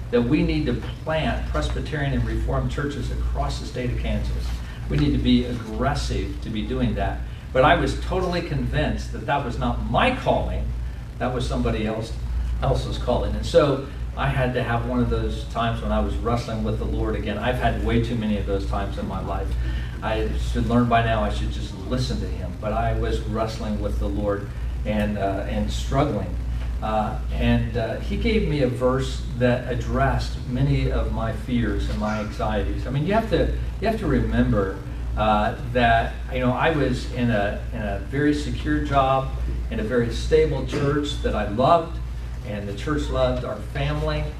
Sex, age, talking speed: male, 50-69, 195 wpm